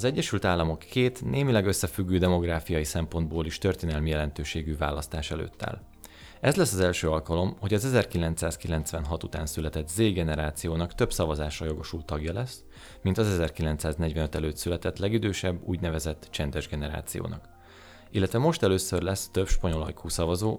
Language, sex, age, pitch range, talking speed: Hungarian, male, 30-49, 80-95 Hz, 135 wpm